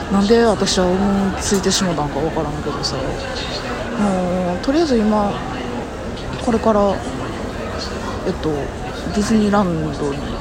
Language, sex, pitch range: Japanese, female, 200-265 Hz